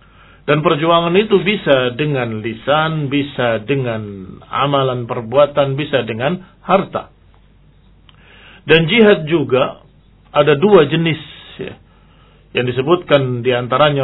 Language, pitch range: Indonesian, 120-165 Hz